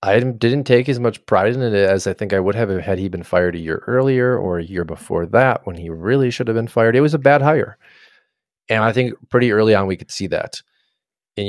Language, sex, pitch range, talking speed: English, male, 90-115 Hz, 255 wpm